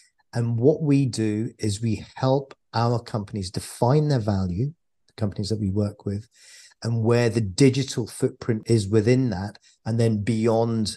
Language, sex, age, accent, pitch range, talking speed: English, male, 40-59, British, 110-125 Hz, 160 wpm